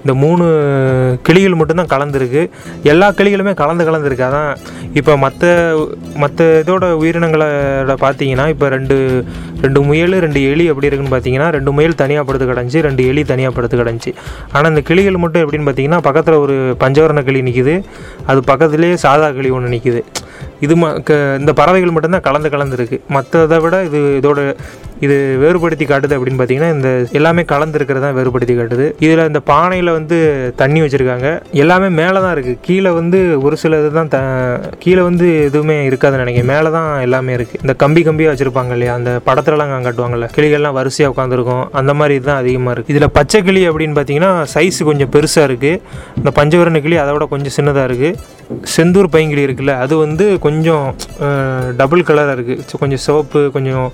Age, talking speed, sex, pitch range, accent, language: 30-49, 160 wpm, male, 135-160 Hz, native, Tamil